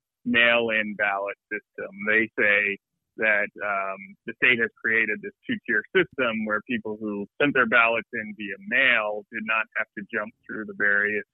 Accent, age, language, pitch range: American, 30-49, English, 105-120 Hz